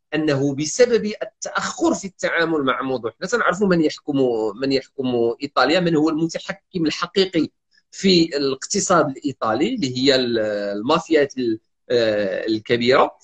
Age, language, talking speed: 40-59, Arabic, 115 wpm